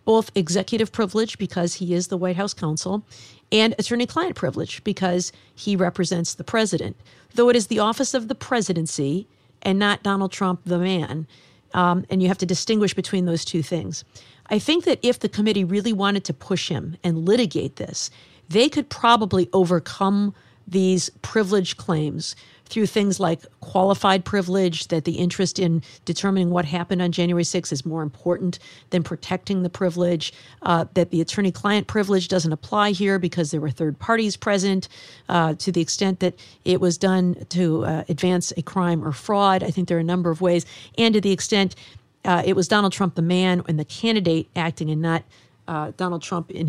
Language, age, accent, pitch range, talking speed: English, 50-69, American, 160-195 Hz, 185 wpm